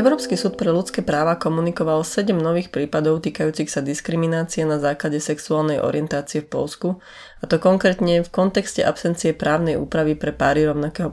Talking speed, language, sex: 155 wpm, Slovak, female